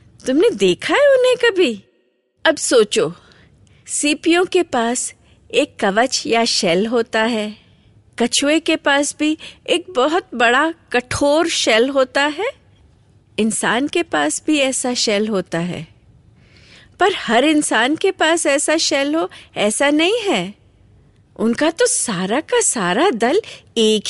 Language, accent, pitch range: Hindi, native, 200-325 Hz